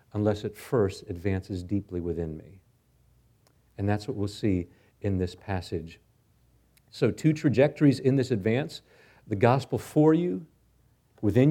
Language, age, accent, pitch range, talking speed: English, 40-59, American, 115-150 Hz, 135 wpm